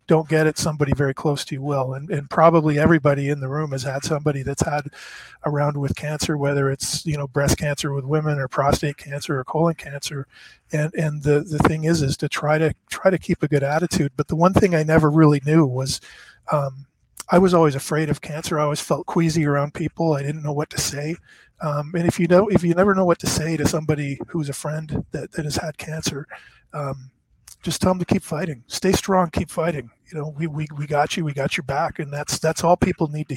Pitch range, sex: 140-160 Hz, male